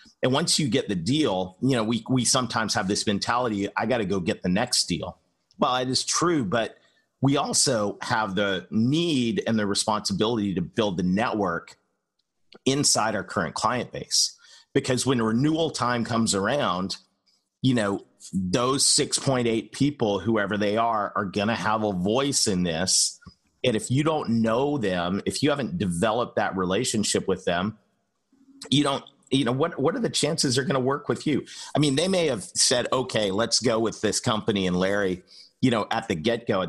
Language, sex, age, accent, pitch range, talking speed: English, male, 40-59, American, 100-130 Hz, 190 wpm